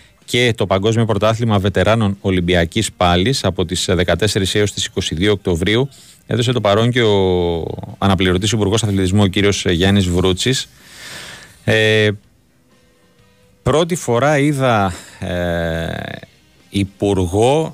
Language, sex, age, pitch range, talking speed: Greek, male, 30-49, 95-115 Hz, 110 wpm